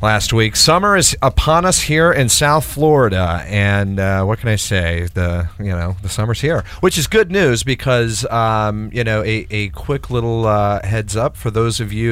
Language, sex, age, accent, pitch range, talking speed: English, male, 40-59, American, 90-115 Hz, 205 wpm